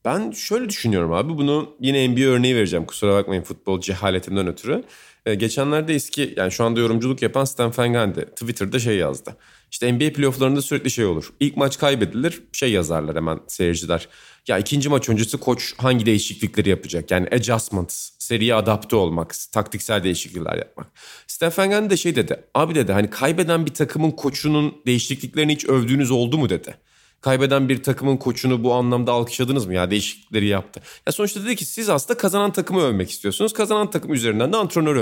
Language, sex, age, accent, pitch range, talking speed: Turkish, male, 40-59, native, 110-155 Hz, 175 wpm